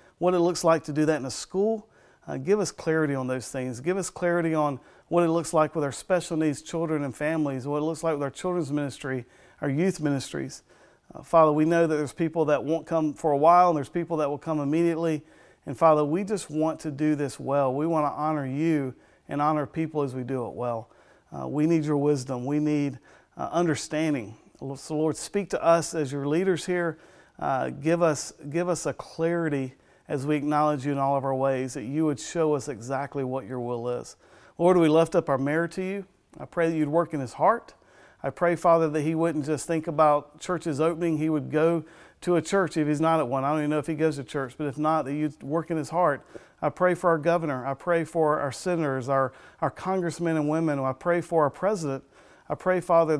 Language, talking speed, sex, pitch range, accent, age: English, 235 wpm, male, 145-165 Hz, American, 40-59